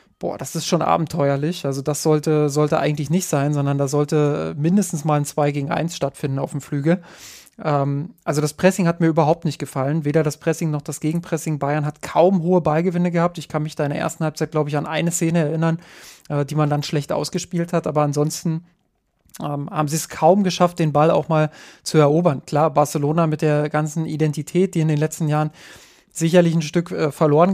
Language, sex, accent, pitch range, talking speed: German, male, German, 150-170 Hz, 210 wpm